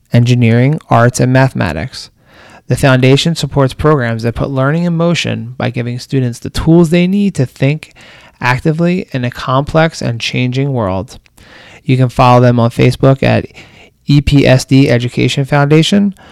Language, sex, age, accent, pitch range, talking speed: English, male, 30-49, American, 125-150 Hz, 145 wpm